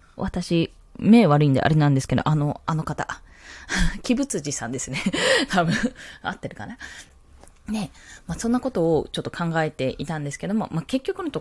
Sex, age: female, 20-39